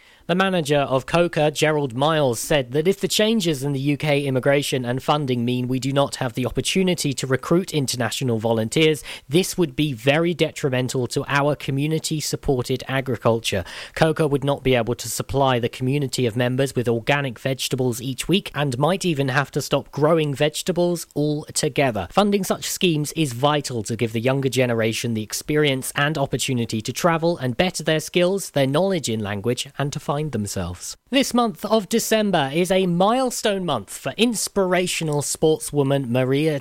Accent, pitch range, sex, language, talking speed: British, 125-170 Hz, male, English, 165 wpm